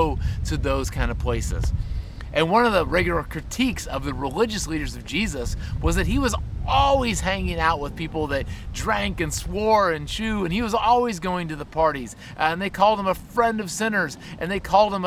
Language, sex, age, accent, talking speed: English, male, 30-49, American, 210 wpm